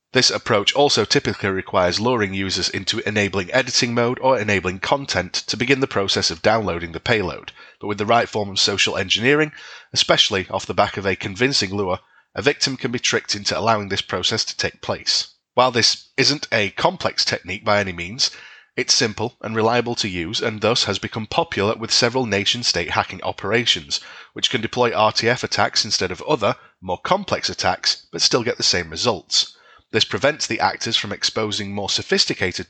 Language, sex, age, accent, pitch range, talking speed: English, male, 30-49, British, 100-125 Hz, 185 wpm